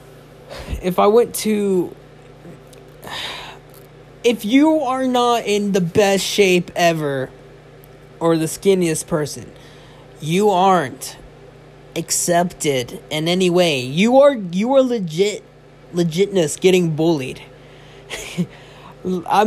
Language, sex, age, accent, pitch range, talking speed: English, male, 20-39, American, 140-190 Hz, 100 wpm